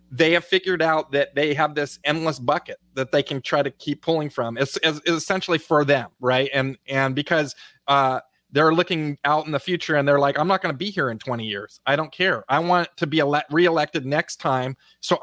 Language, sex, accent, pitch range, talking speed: English, male, American, 135-160 Hz, 220 wpm